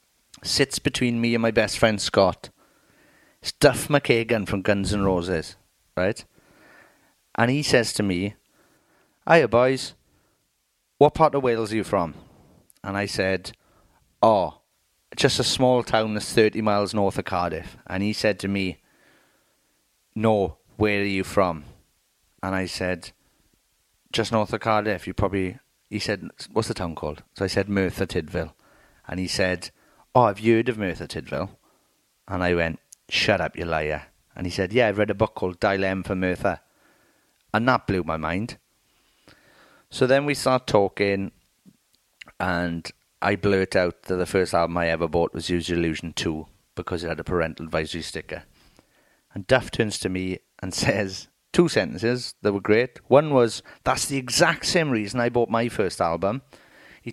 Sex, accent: male, British